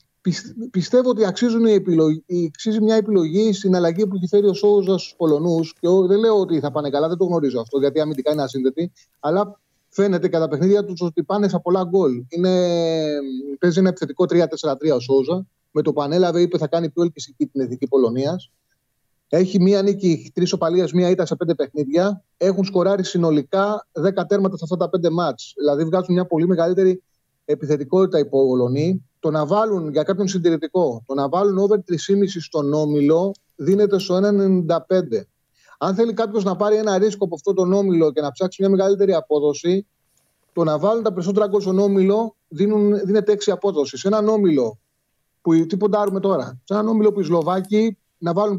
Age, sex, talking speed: 30-49, male, 175 wpm